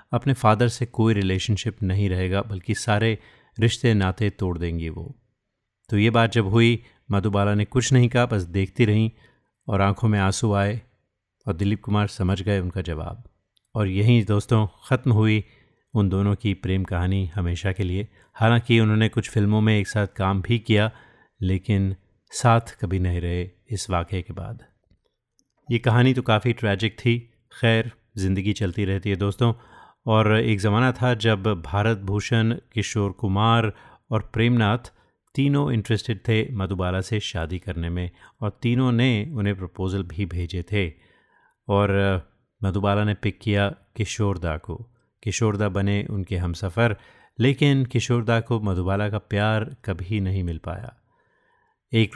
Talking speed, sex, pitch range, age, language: 155 wpm, male, 95-115 Hz, 30-49, Hindi